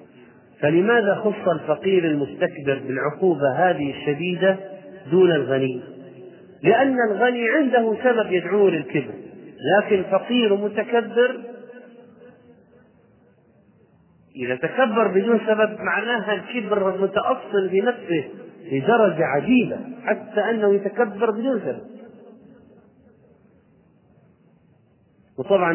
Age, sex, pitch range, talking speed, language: 40-59, male, 150-210 Hz, 80 wpm, Arabic